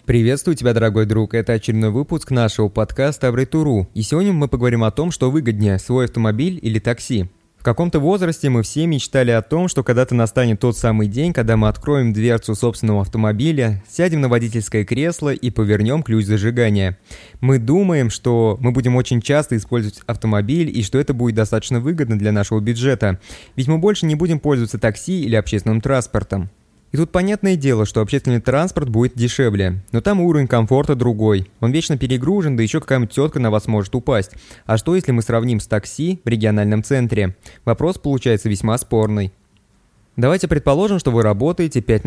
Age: 20-39